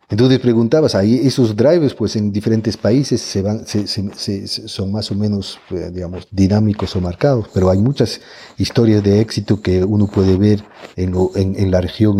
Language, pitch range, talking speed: Spanish, 95-110 Hz, 175 wpm